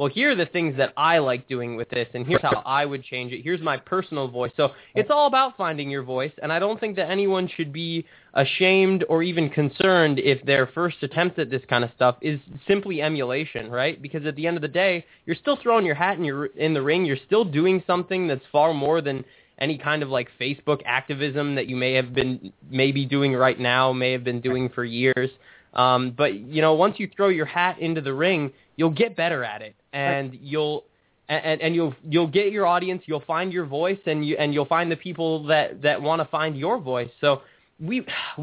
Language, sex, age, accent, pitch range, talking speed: English, male, 20-39, American, 125-160 Hz, 230 wpm